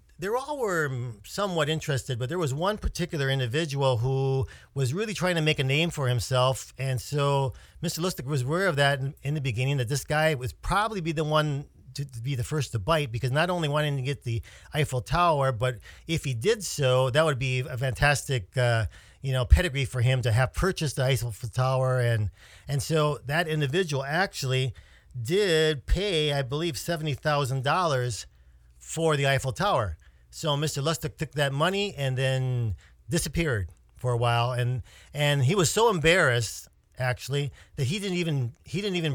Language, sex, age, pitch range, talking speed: English, male, 50-69, 120-155 Hz, 180 wpm